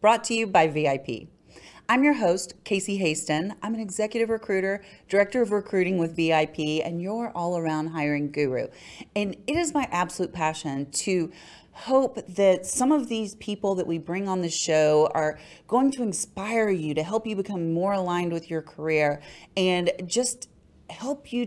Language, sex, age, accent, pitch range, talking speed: English, female, 30-49, American, 160-210 Hz, 170 wpm